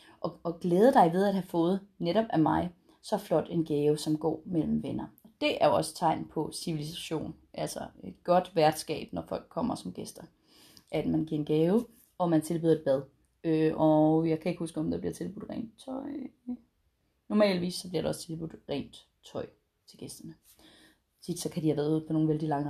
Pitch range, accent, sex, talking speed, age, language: 160-220 Hz, native, female, 205 wpm, 30-49, Danish